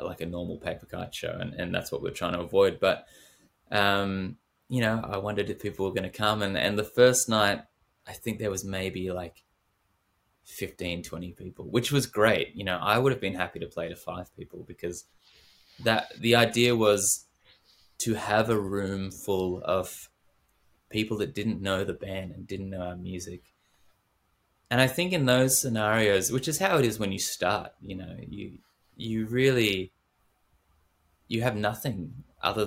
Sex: male